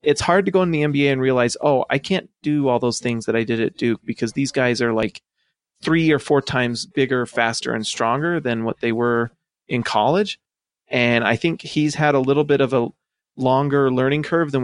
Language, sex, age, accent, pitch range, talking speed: English, male, 30-49, American, 120-150 Hz, 220 wpm